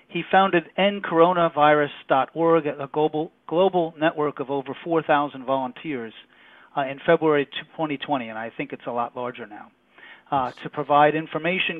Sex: male